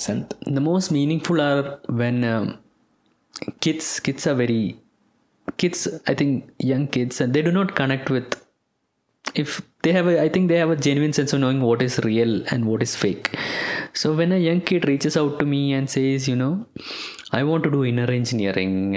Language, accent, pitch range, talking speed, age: English, Indian, 110-145 Hz, 190 wpm, 20-39